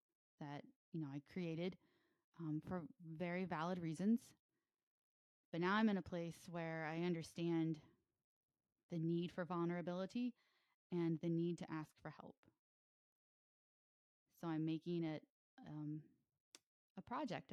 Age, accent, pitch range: 20-39, American, 165-215 Hz